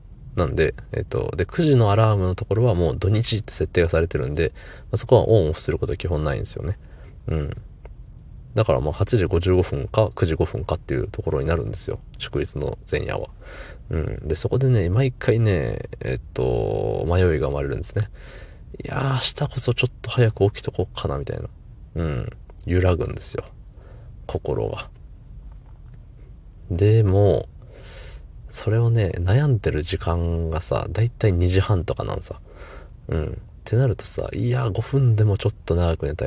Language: Japanese